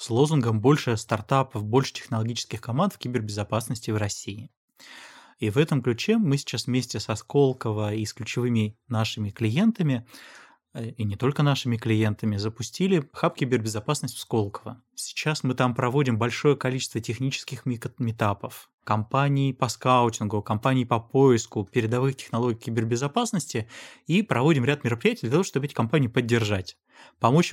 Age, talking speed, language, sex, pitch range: 20-39, 135 wpm, Russian, male, 110-135 Hz